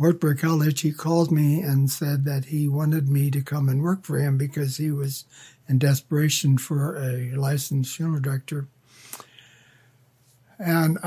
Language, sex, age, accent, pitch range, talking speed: English, male, 60-79, American, 135-155 Hz, 150 wpm